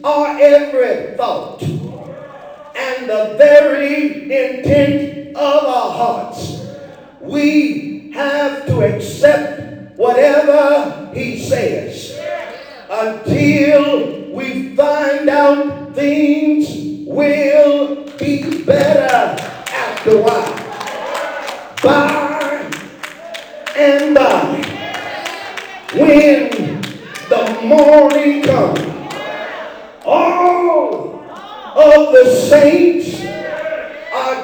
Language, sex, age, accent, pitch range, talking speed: English, male, 40-59, American, 280-300 Hz, 70 wpm